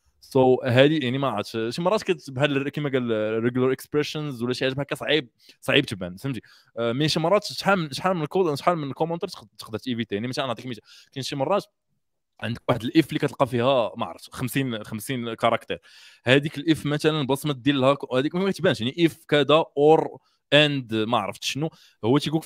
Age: 20-39